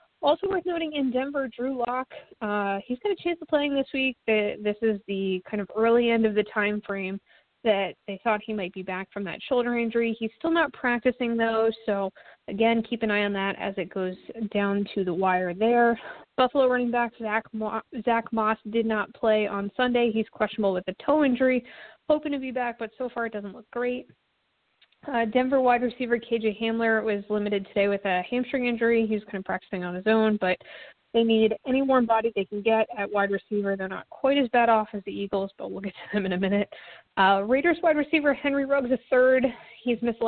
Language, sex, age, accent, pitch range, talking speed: English, female, 20-39, American, 200-250 Hz, 215 wpm